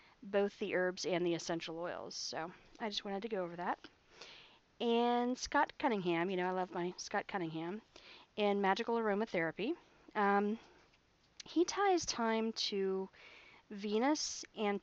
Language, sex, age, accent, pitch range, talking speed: English, female, 40-59, American, 180-230 Hz, 140 wpm